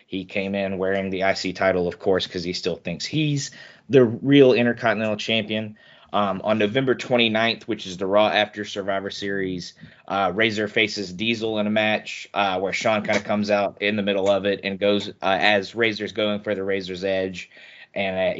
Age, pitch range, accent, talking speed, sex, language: 20-39, 95-110 Hz, American, 195 wpm, male, English